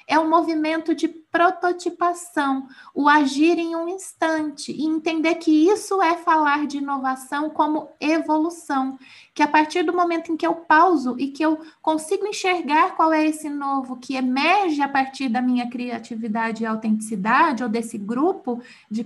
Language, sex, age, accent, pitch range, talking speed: Portuguese, female, 20-39, Brazilian, 260-320 Hz, 165 wpm